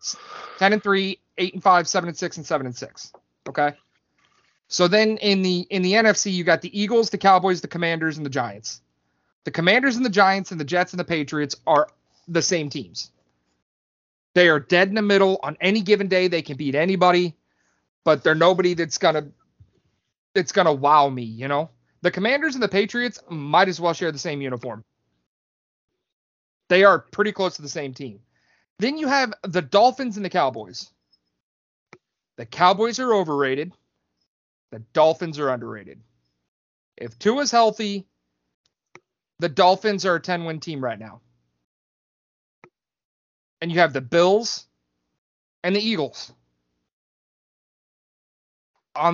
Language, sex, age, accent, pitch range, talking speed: English, male, 30-49, American, 130-195 Hz, 160 wpm